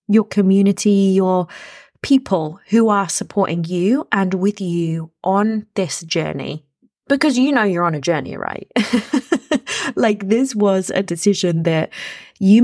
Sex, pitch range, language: female, 175-205 Hz, English